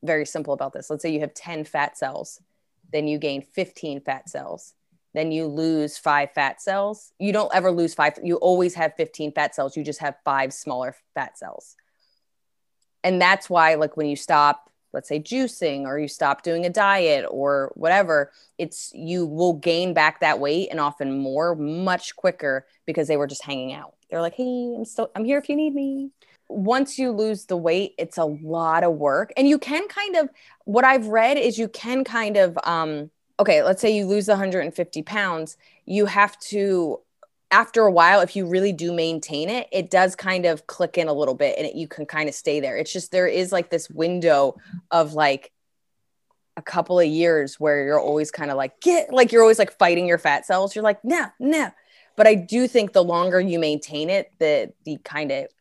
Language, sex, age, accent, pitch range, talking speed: English, female, 20-39, American, 150-210 Hz, 205 wpm